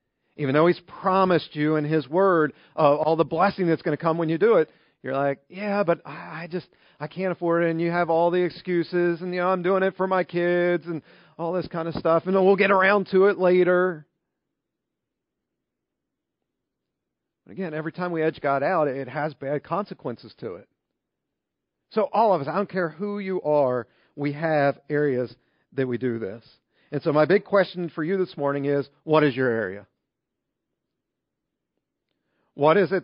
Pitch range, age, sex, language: 140-180 Hz, 40-59, male, English